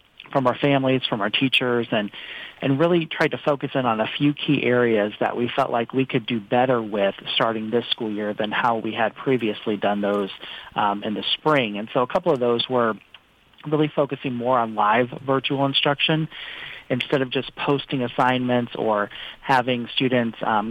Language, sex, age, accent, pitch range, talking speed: English, male, 40-59, American, 115-140 Hz, 190 wpm